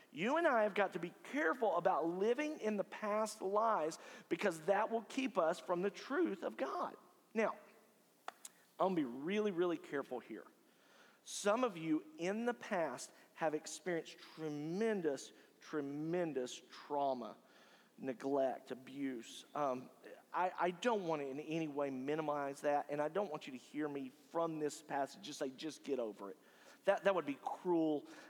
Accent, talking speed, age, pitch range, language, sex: American, 165 wpm, 40-59, 145-190 Hz, English, male